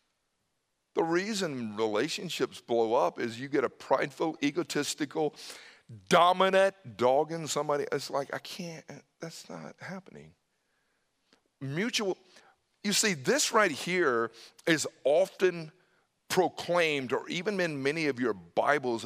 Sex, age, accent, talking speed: male, 50-69, American, 120 wpm